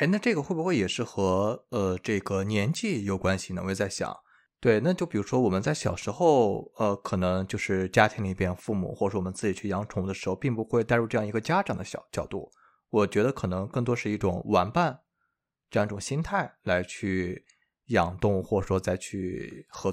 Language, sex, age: Chinese, male, 20-39